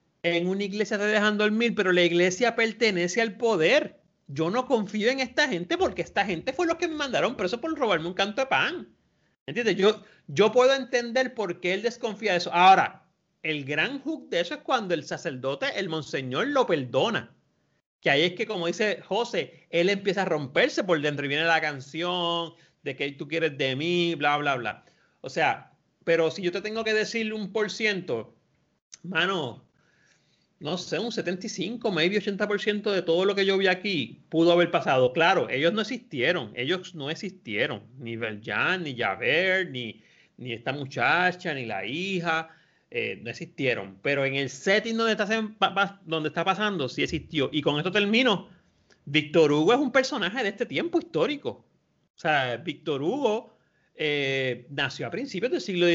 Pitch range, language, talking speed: 155-215 Hz, Spanish, 180 wpm